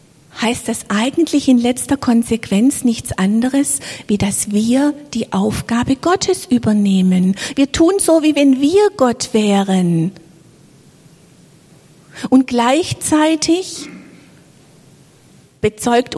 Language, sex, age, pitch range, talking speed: German, female, 50-69, 170-245 Hz, 95 wpm